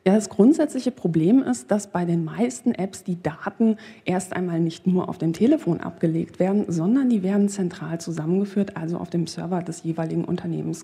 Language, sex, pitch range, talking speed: German, female, 175-205 Hz, 185 wpm